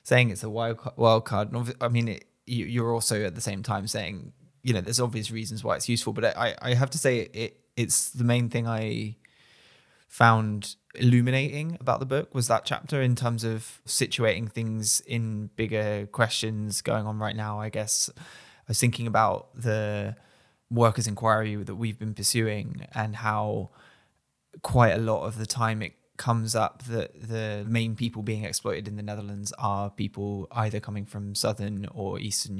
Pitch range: 105-120 Hz